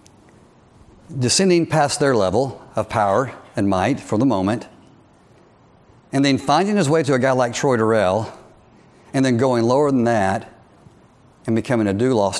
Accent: American